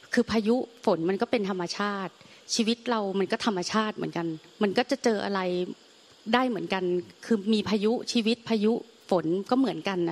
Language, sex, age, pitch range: Thai, female, 30-49, 195-235 Hz